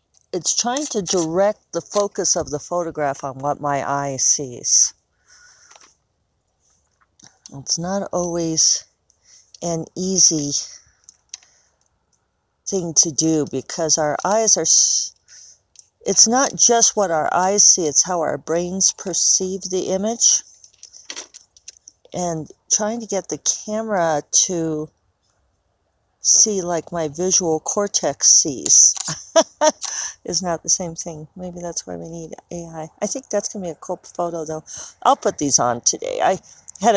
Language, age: English, 50-69